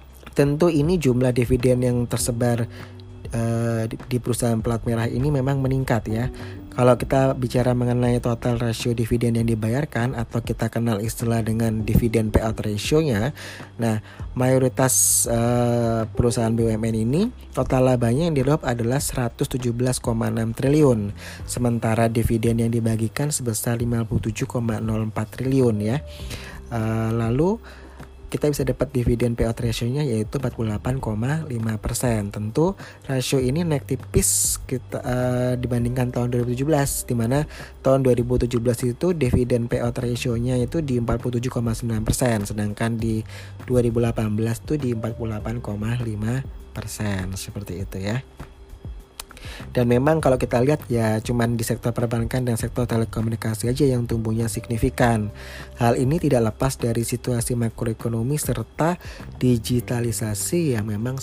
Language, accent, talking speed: Indonesian, native, 125 wpm